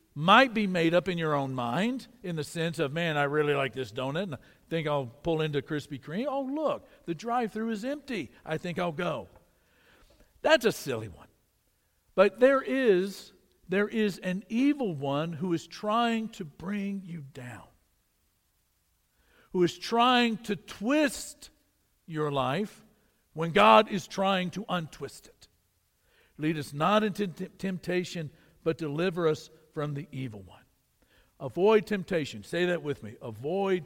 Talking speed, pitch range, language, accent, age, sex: 160 wpm, 130-200 Hz, English, American, 60-79, male